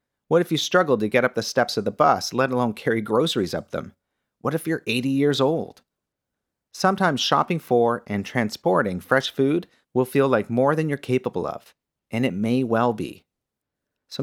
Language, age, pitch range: English, 40-59, 115-155 Hz